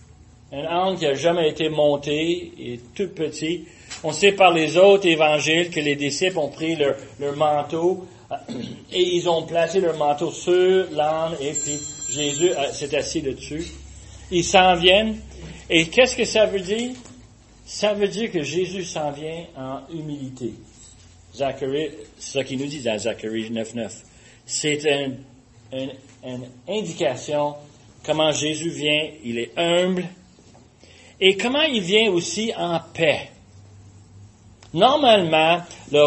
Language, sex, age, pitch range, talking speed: French, male, 40-59, 125-180 Hz, 145 wpm